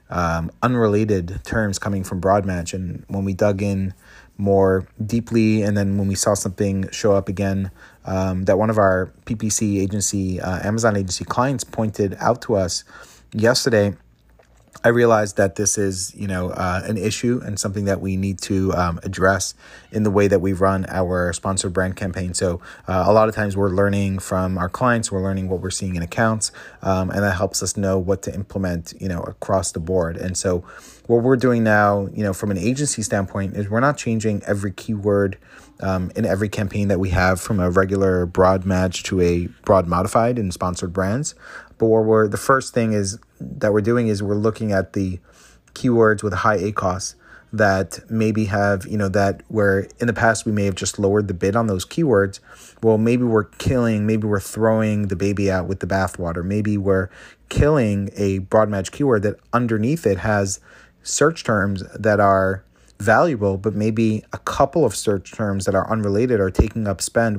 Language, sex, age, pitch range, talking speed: English, male, 30-49, 95-110 Hz, 195 wpm